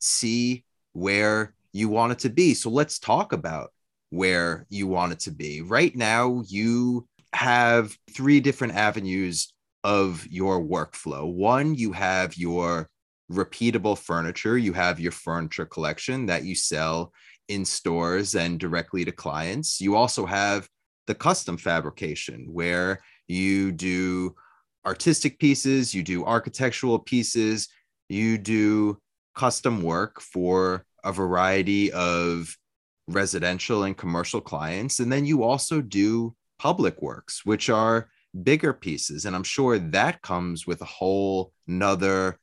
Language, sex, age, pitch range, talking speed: English, male, 30-49, 90-120 Hz, 135 wpm